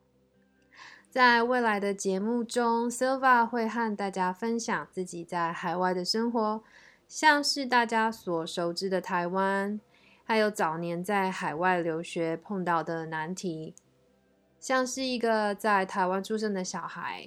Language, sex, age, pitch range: Chinese, female, 20-39, 170-215 Hz